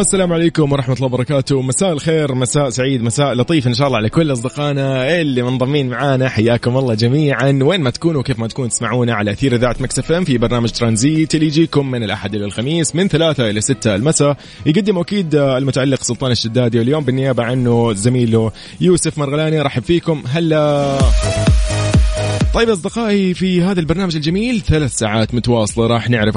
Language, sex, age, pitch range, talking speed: Arabic, male, 20-39, 110-145 Hz, 165 wpm